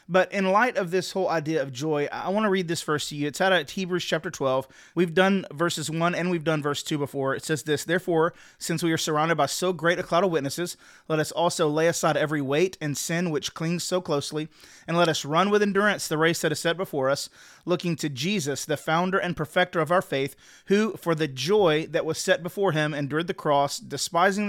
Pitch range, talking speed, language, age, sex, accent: 155-190 Hz, 240 wpm, English, 30-49, male, American